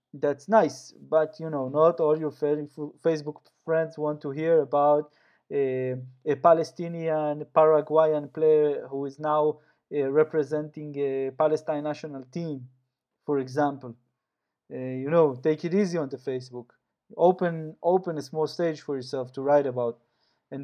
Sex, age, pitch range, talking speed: male, 20-39, 135-160 Hz, 145 wpm